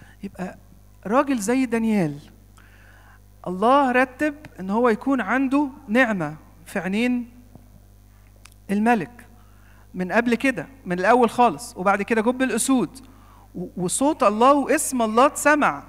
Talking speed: 110 wpm